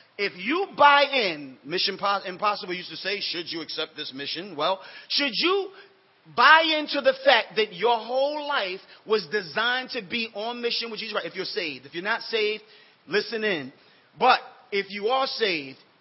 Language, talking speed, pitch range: English, 180 wpm, 175-235 Hz